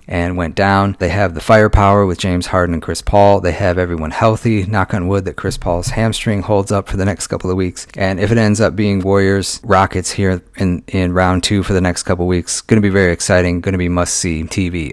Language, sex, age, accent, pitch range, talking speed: English, male, 30-49, American, 90-110 Hz, 235 wpm